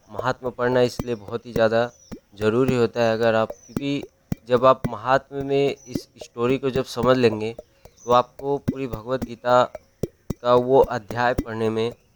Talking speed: 155 wpm